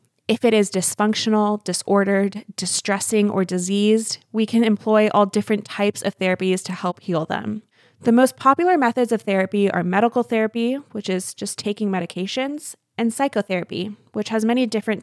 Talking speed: 160 wpm